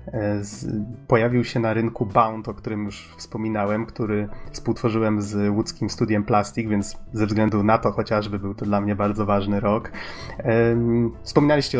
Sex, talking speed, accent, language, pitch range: male, 150 wpm, native, Polish, 110-125 Hz